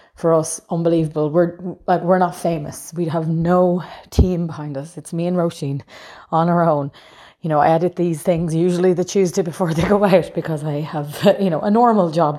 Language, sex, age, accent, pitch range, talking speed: English, female, 30-49, Irish, 155-180 Hz, 205 wpm